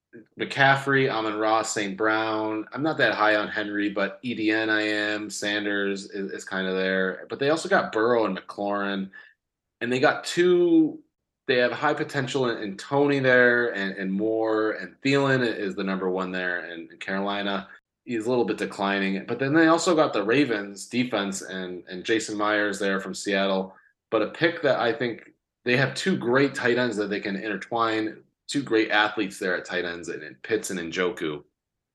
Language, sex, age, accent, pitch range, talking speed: English, male, 20-39, American, 100-140 Hz, 195 wpm